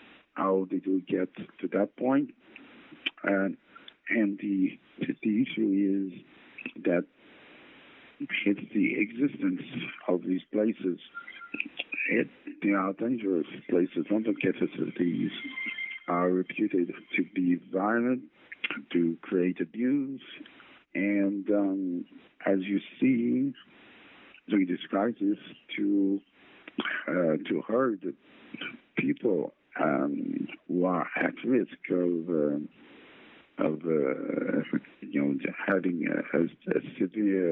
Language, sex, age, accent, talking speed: English, male, 50-69, American, 100 wpm